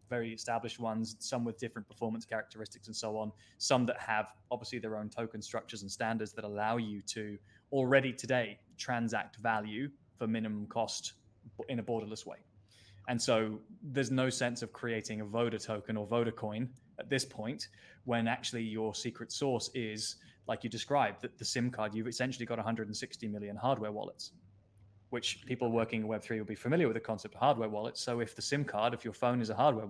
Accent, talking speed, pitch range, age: British, 195 wpm, 105-120 Hz, 20-39